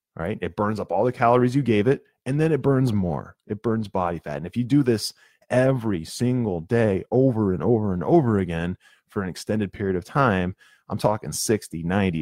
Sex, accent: male, American